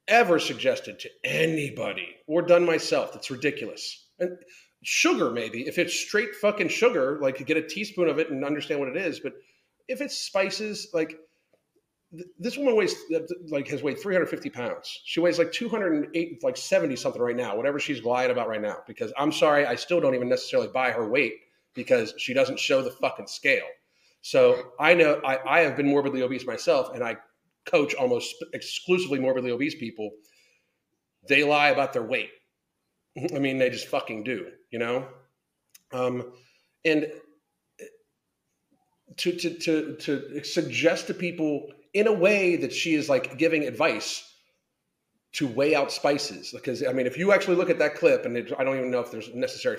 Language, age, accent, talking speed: English, 40-59, American, 180 wpm